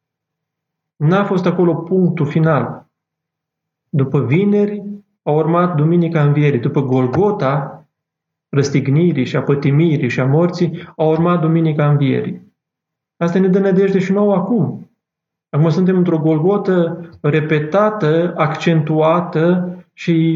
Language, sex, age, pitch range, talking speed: Romanian, male, 30-49, 150-180 Hz, 110 wpm